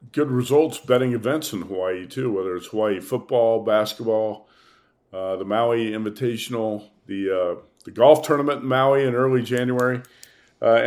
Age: 50-69